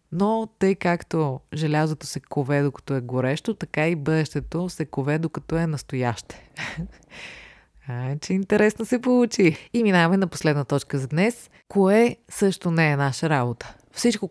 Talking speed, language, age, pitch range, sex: 150 wpm, Bulgarian, 30-49, 145-180 Hz, female